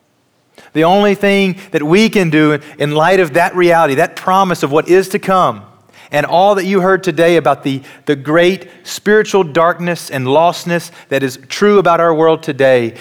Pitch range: 140-180 Hz